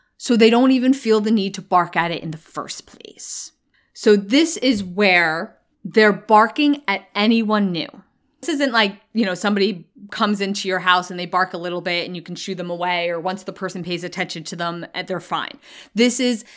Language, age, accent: English, 20-39, American